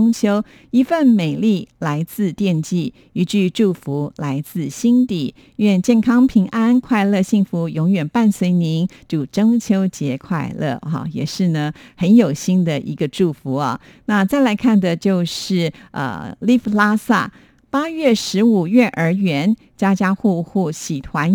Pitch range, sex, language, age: 160-220 Hz, female, Chinese, 50-69